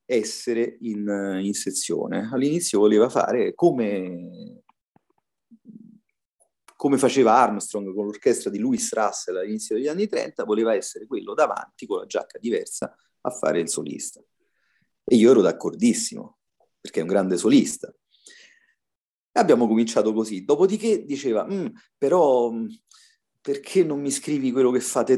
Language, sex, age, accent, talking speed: Italian, male, 40-59, native, 135 wpm